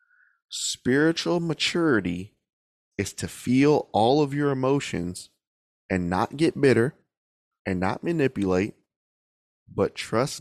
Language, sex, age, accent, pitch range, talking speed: English, male, 20-39, American, 100-140 Hz, 105 wpm